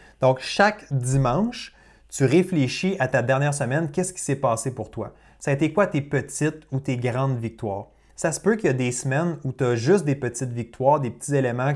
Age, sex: 30-49, male